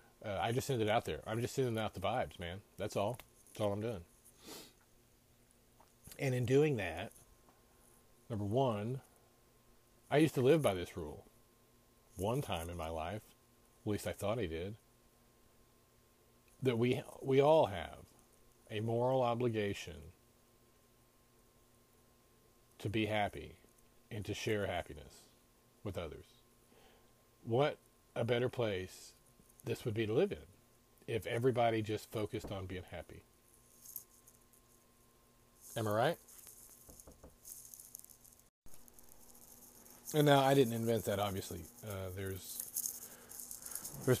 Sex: male